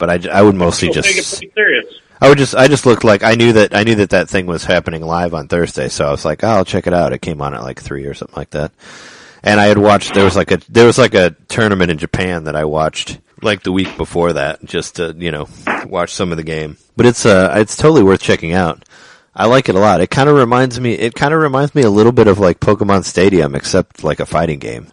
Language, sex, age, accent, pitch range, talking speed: English, male, 30-49, American, 75-100 Hz, 270 wpm